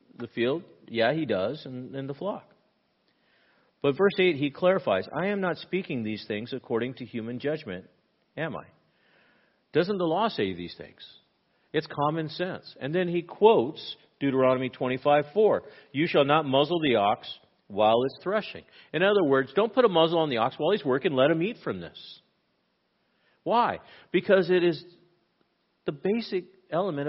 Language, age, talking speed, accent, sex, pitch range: English, 50-69, 170 wpm, American, male, 125-185 Hz